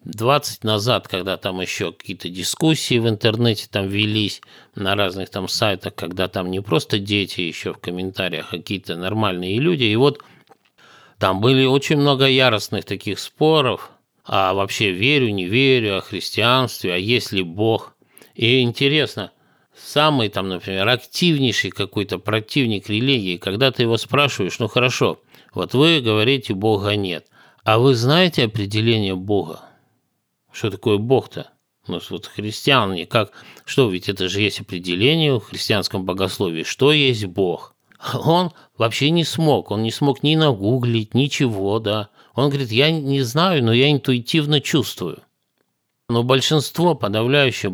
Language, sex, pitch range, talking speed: Russian, male, 100-135 Hz, 145 wpm